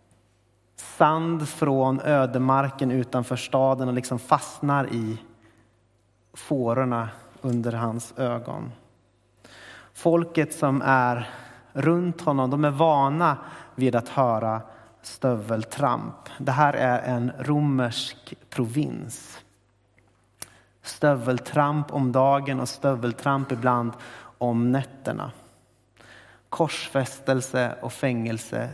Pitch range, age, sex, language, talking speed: 115-140 Hz, 30-49, male, Swedish, 90 wpm